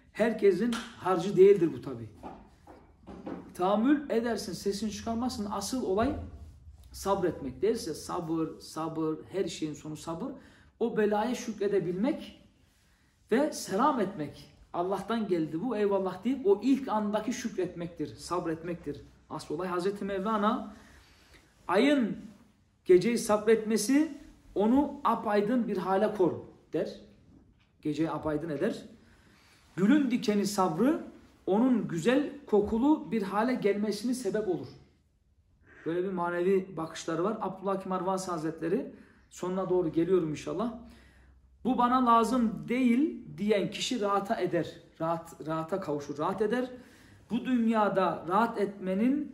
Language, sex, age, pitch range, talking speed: Turkish, male, 40-59, 170-230 Hz, 110 wpm